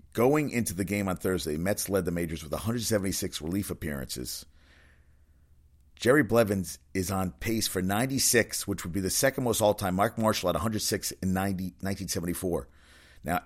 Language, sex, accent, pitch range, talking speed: English, male, American, 75-105 Hz, 160 wpm